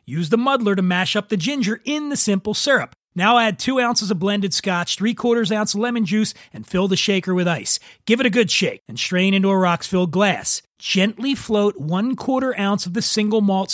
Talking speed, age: 225 wpm, 30-49